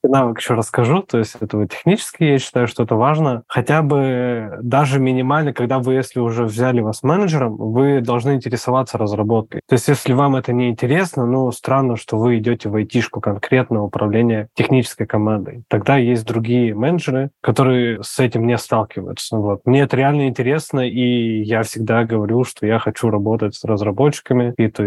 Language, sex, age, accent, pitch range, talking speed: Russian, male, 20-39, native, 110-130 Hz, 170 wpm